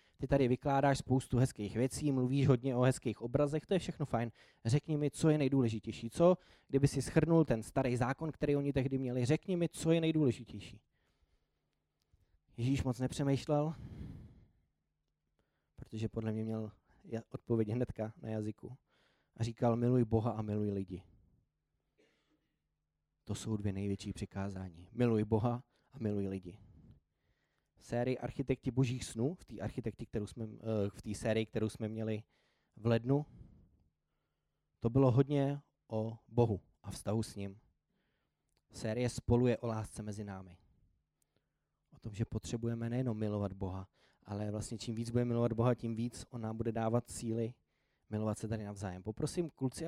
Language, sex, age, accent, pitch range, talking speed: Czech, male, 20-39, native, 105-130 Hz, 150 wpm